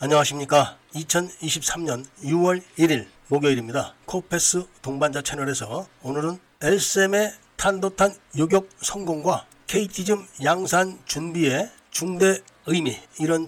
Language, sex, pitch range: Korean, male, 145-190 Hz